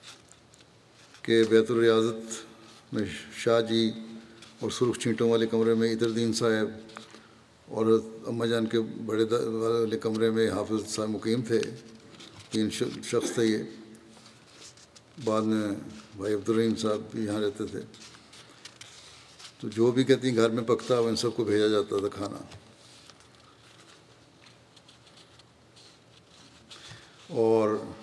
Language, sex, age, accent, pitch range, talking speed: English, male, 60-79, Indian, 110-115 Hz, 75 wpm